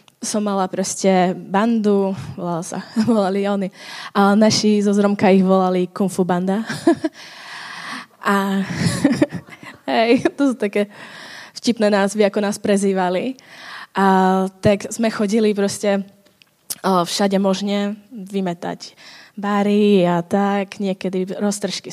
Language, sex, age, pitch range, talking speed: Czech, female, 20-39, 190-210 Hz, 100 wpm